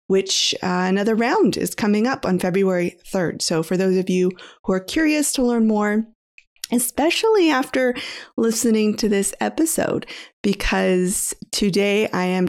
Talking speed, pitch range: 150 wpm, 195-265 Hz